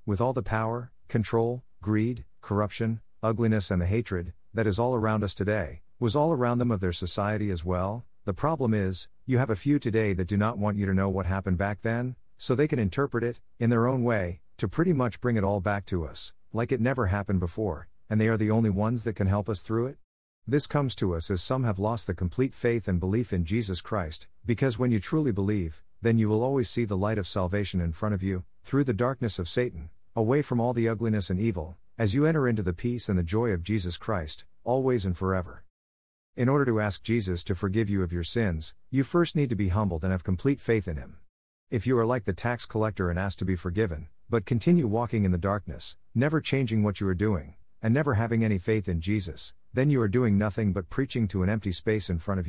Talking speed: 240 wpm